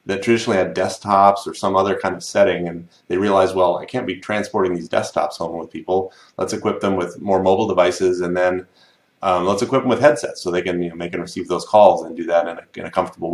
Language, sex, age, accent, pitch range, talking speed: English, male, 30-49, American, 90-115 Hz, 250 wpm